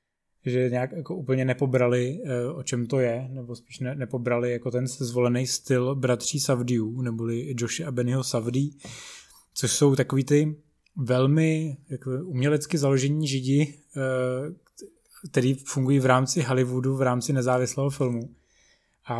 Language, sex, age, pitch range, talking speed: Czech, male, 20-39, 125-145 Hz, 130 wpm